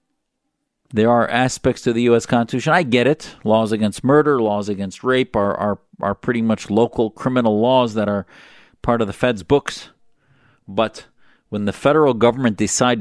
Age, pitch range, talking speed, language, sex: 50-69, 105-125 Hz, 170 wpm, English, male